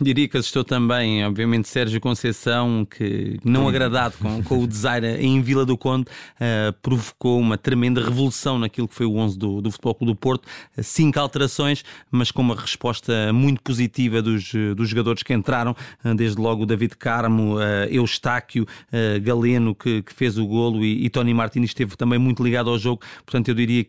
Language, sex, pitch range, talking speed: Portuguese, male, 115-130 Hz, 185 wpm